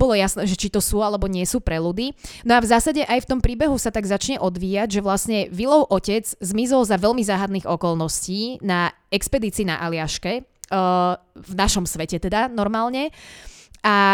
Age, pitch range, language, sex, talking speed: 20-39, 185-220 Hz, Slovak, female, 185 wpm